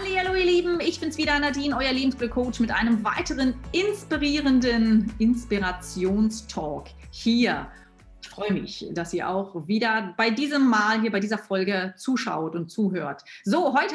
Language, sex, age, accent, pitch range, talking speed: German, female, 30-49, German, 190-260 Hz, 145 wpm